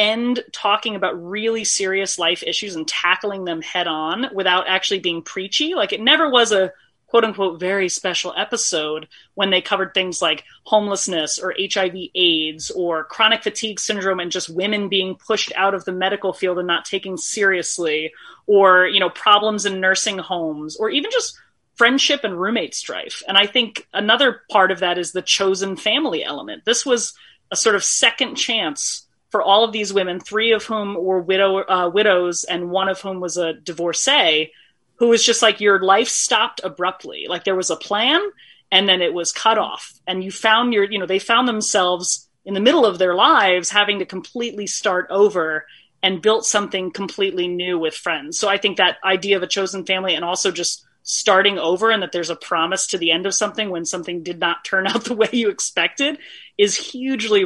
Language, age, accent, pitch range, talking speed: English, 30-49, American, 180-215 Hz, 195 wpm